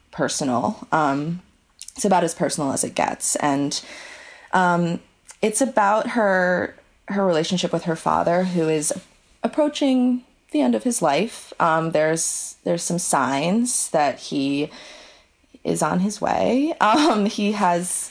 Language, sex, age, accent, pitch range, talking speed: English, female, 20-39, American, 155-195 Hz, 135 wpm